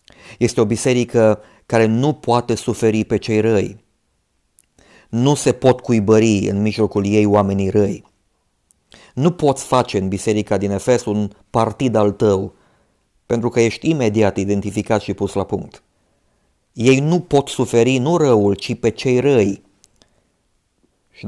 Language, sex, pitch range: Romanian, male, 100-120 Hz